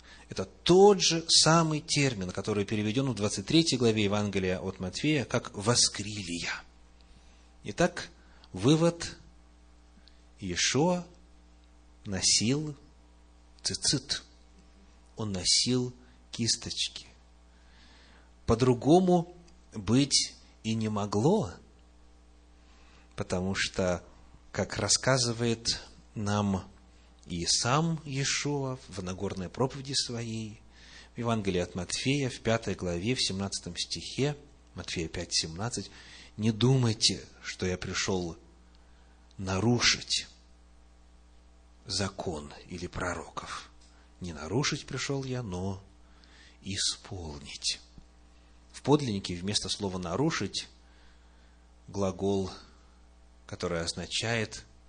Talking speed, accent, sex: 80 wpm, native, male